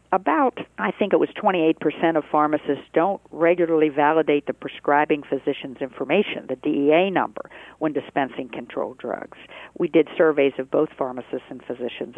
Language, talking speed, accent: English, 150 wpm, American